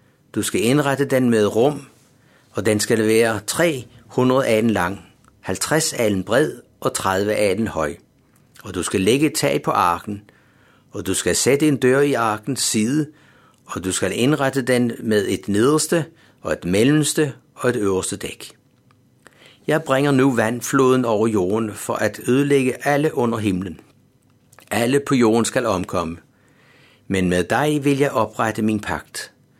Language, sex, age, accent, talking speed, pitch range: Danish, male, 60-79, native, 160 wpm, 110-135 Hz